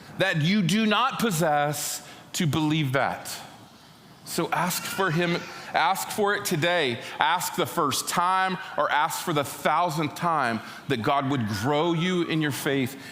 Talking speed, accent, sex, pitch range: 155 wpm, American, male, 140-185 Hz